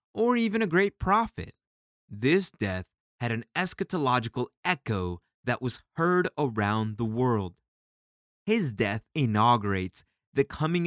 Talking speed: 120 wpm